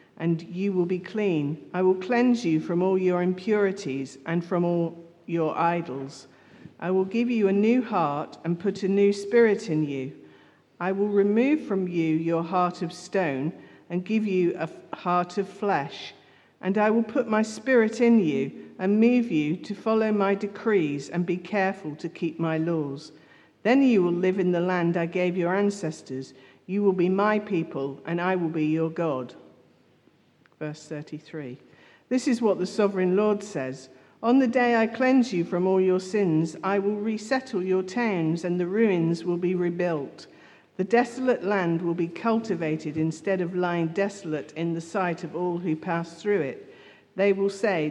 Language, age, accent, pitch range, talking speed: English, 50-69, British, 165-205 Hz, 180 wpm